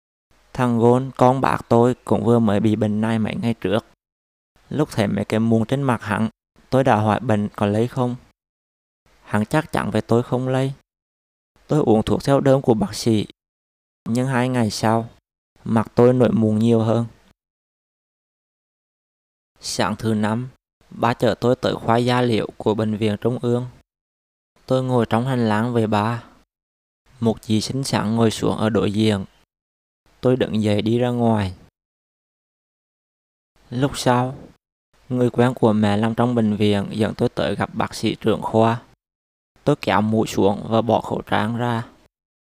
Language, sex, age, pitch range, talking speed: Vietnamese, male, 20-39, 105-120 Hz, 165 wpm